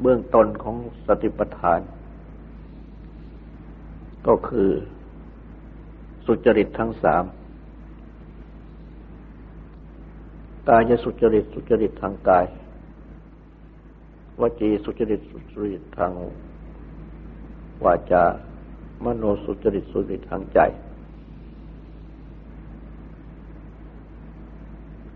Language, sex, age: Thai, male, 60-79